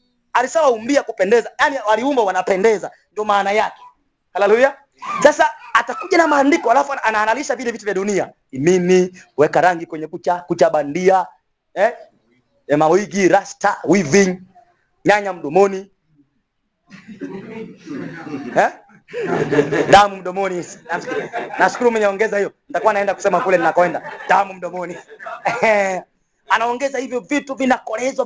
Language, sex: English, male